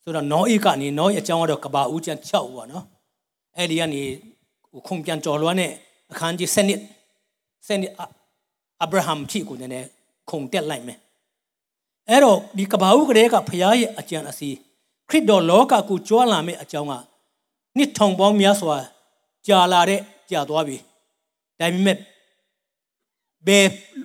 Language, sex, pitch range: English, male, 160-205 Hz